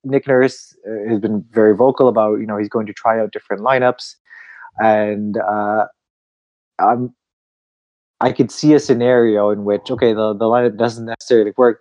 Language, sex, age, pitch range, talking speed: English, male, 20-39, 100-120 Hz, 170 wpm